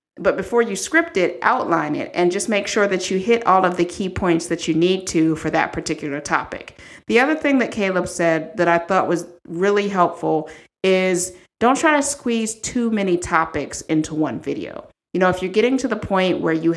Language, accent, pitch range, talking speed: English, American, 160-200 Hz, 215 wpm